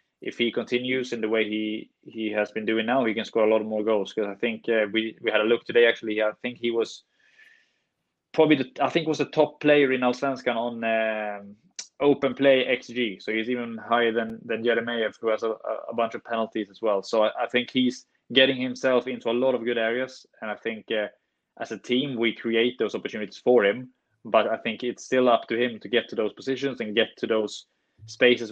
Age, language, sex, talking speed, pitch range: 20-39, English, male, 230 wpm, 110-125 Hz